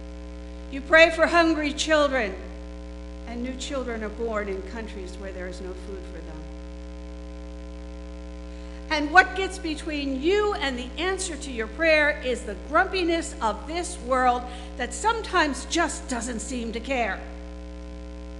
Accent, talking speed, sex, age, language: American, 140 wpm, female, 60-79, English